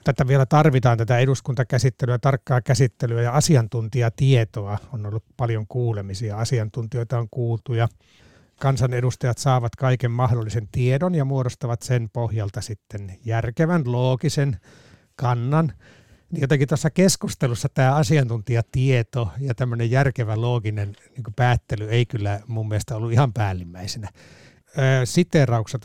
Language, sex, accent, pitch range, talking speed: Finnish, male, native, 115-135 Hz, 110 wpm